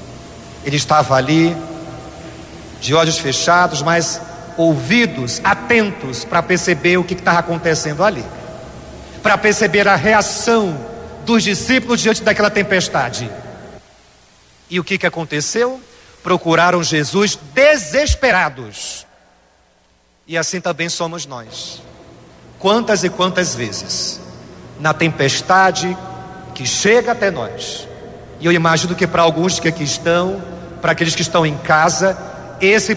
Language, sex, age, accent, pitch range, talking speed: Portuguese, male, 40-59, Brazilian, 170-225 Hz, 120 wpm